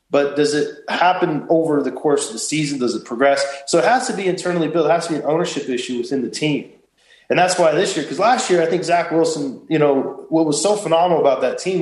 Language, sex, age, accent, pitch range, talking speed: English, male, 20-39, American, 140-175 Hz, 260 wpm